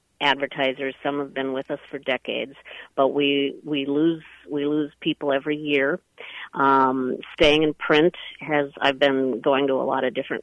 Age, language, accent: 50-69, English, American